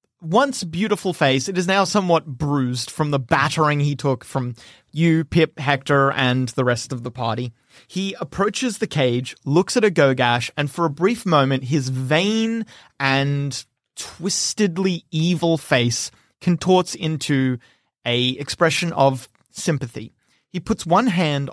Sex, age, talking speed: male, 30-49, 145 wpm